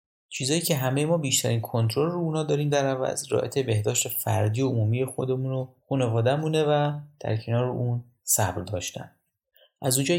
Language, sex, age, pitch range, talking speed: Persian, male, 30-49, 110-140 Hz, 165 wpm